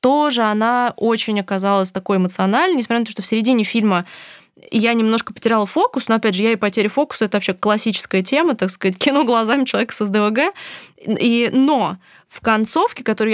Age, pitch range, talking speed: 20-39, 195-245 Hz, 180 wpm